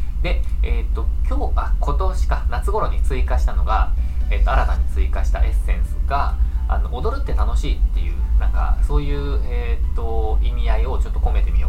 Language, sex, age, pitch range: Japanese, male, 20-39, 65-70 Hz